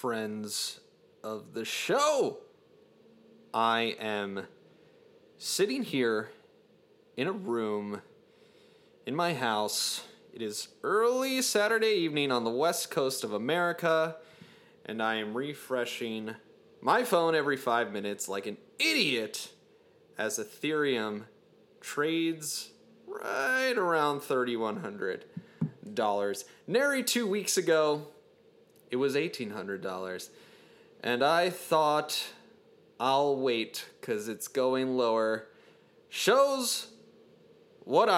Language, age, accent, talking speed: English, 30-49, American, 95 wpm